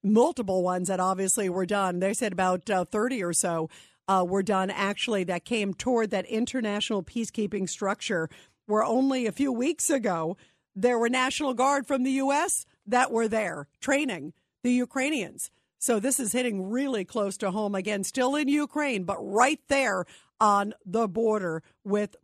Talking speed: 165 wpm